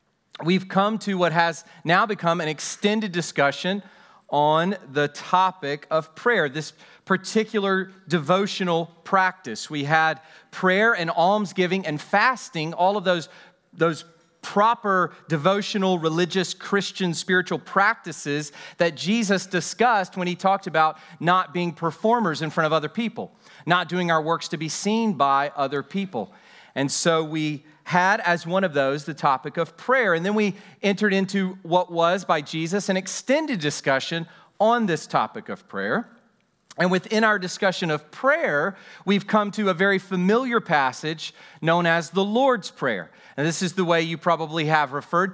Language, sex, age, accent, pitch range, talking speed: English, male, 40-59, American, 160-200 Hz, 155 wpm